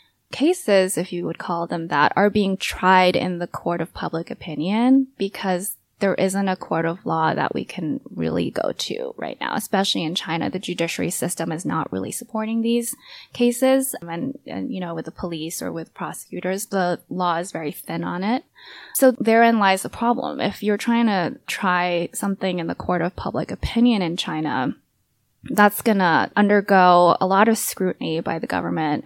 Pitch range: 170-210 Hz